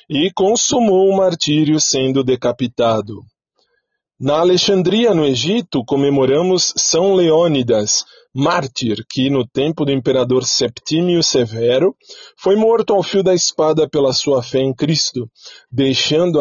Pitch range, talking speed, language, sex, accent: 125-160 Hz, 120 wpm, Portuguese, male, Brazilian